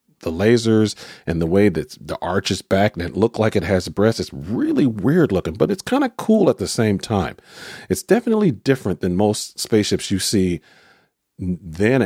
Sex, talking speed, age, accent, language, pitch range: male, 200 wpm, 40-59, American, English, 85-110 Hz